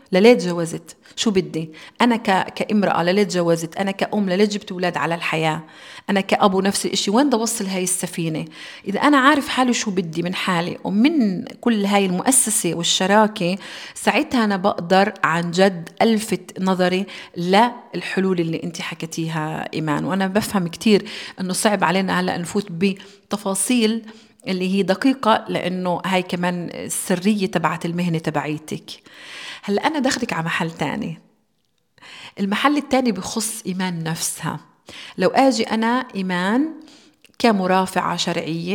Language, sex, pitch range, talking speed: Arabic, female, 180-225 Hz, 135 wpm